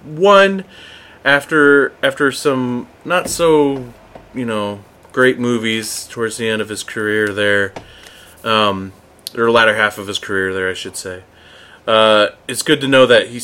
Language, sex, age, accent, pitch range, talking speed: English, male, 30-49, American, 95-125 Hz, 155 wpm